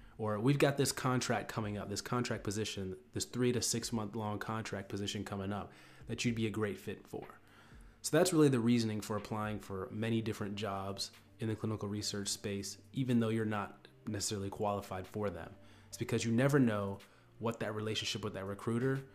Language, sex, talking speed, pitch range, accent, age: English, male, 190 wpm, 105-125 Hz, American, 30-49